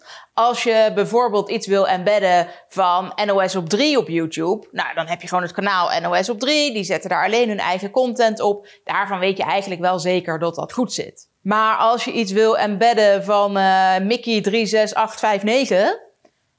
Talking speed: 175 wpm